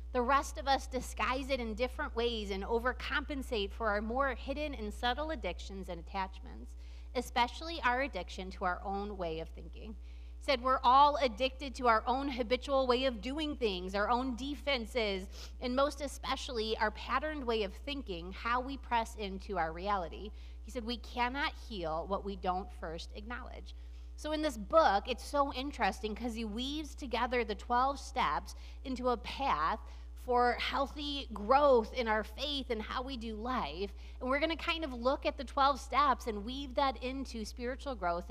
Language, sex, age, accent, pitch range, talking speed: English, female, 30-49, American, 195-265 Hz, 180 wpm